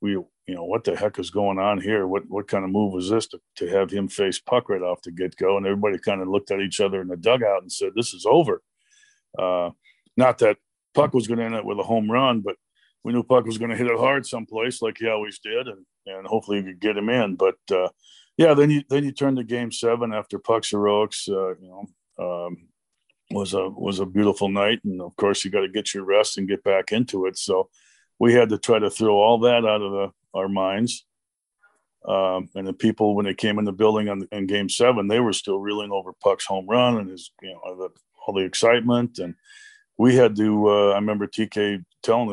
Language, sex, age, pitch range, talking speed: English, male, 50-69, 95-120 Hz, 245 wpm